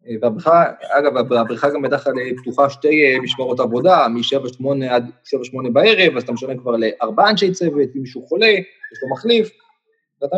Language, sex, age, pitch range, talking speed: Hebrew, male, 20-39, 120-160 Hz, 155 wpm